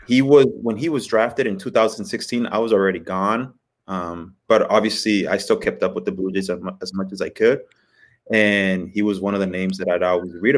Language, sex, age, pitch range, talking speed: English, male, 20-39, 95-105 Hz, 220 wpm